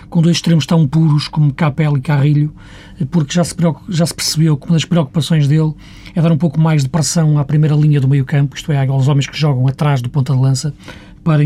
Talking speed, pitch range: 225 wpm, 140-165 Hz